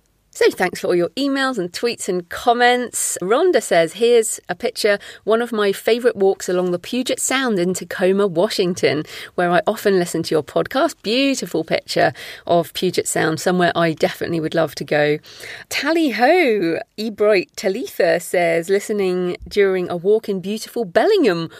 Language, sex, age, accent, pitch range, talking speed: English, female, 30-49, British, 175-235 Hz, 160 wpm